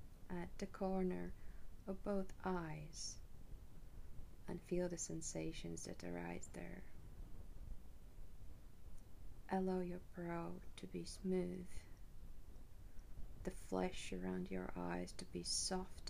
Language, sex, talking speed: English, female, 100 wpm